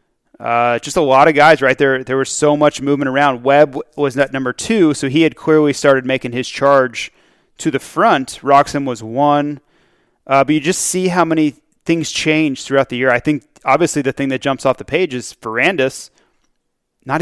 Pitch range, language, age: 130-150 Hz, English, 30-49